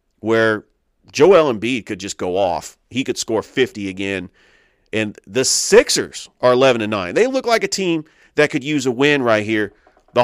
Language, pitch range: English, 100-130 Hz